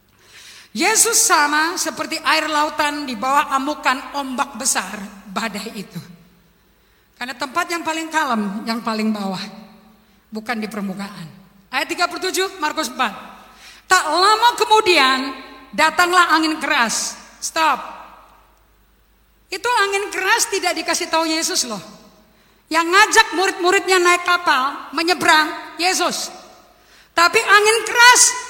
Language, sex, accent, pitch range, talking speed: Indonesian, female, native, 265-380 Hz, 110 wpm